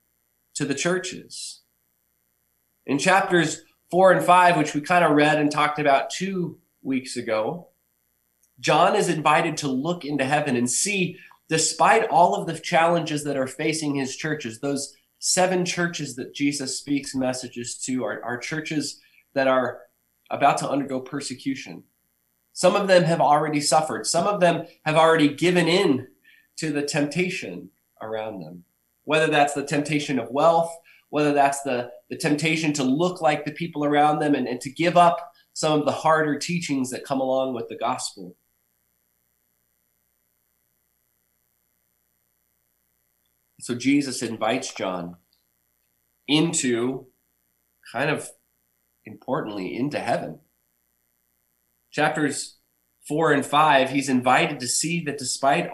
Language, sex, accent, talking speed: English, male, American, 135 wpm